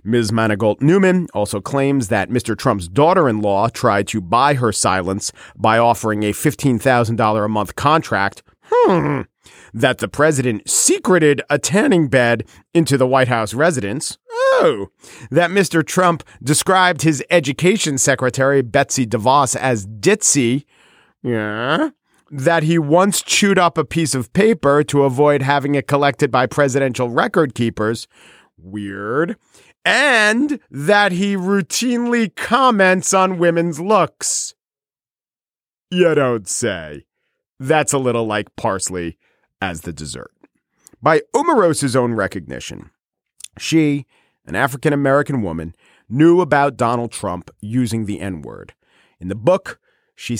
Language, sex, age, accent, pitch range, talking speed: English, male, 40-59, American, 115-165 Hz, 125 wpm